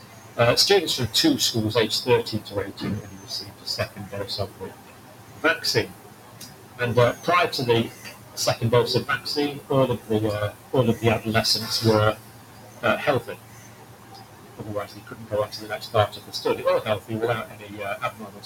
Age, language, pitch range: 40-59, English, 105-120 Hz